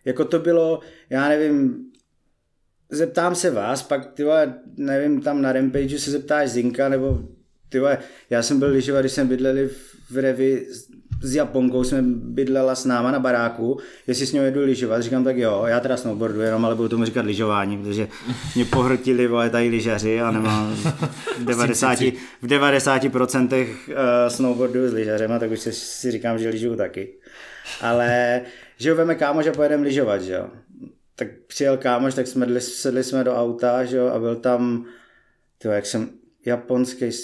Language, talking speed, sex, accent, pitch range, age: Czech, 165 wpm, male, native, 120-150 Hz, 20-39